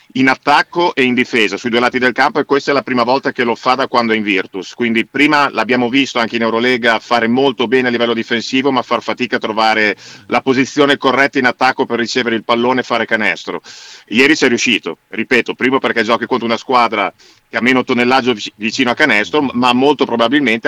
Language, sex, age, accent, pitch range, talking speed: Italian, male, 50-69, native, 115-130 Hz, 215 wpm